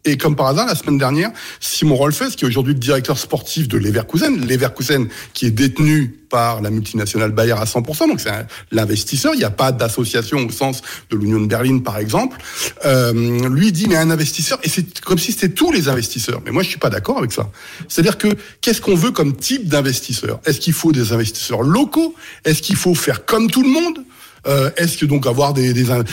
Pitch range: 125-165 Hz